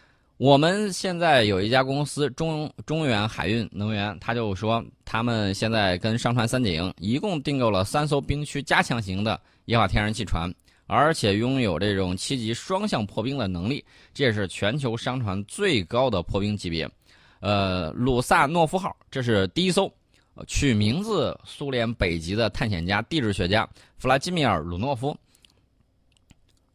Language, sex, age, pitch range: Chinese, male, 20-39, 95-135 Hz